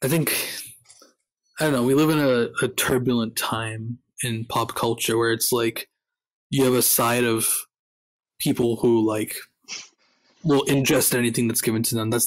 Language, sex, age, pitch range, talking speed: English, male, 20-39, 115-130 Hz, 165 wpm